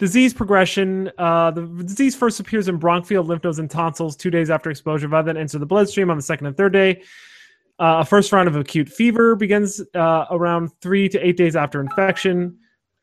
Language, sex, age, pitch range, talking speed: English, male, 30-49, 155-200 Hz, 205 wpm